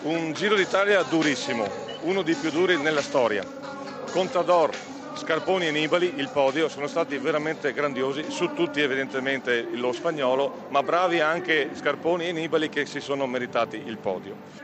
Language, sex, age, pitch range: Italian, male, 40-59, 140-185 Hz